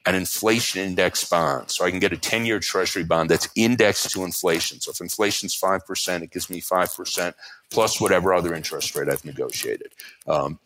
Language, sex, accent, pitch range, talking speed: English, male, American, 90-120 Hz, 185 wpm